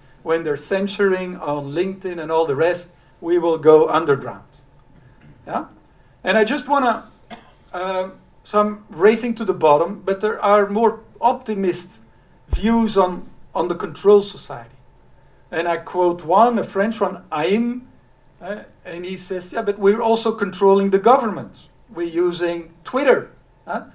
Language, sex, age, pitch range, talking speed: Dutch, male, 50-69, 165-205 Hz, 150 wpm